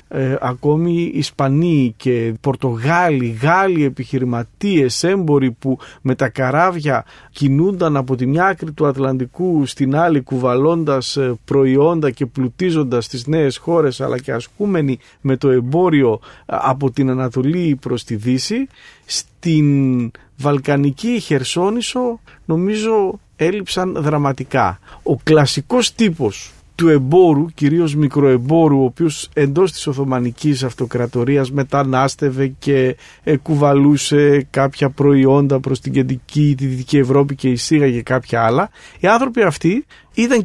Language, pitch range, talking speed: English, 130-160 Hz, 115 wpm